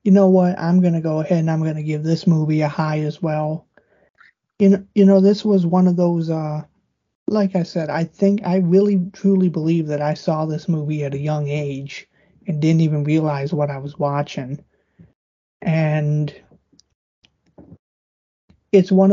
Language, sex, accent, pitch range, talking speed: English, male, American, 150-185 Hz, 180 wpm